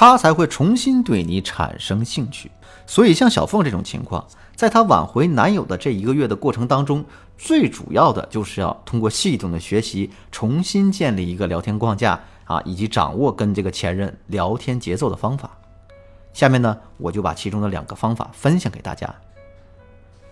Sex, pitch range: male, 95-150 Hz